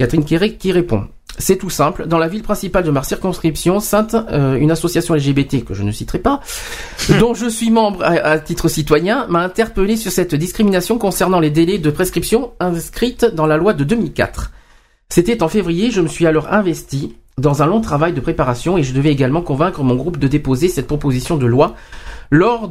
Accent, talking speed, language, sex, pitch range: French, 200 wpm, French, male, 145-190 Hz